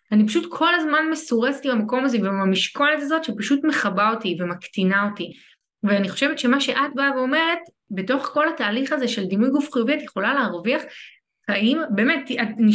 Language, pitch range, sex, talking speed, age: Hebrew, 205-290 Hz, female, 160 wpm, 20-39